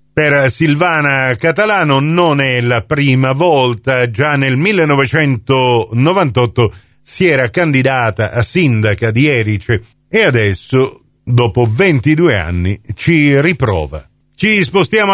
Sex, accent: male, native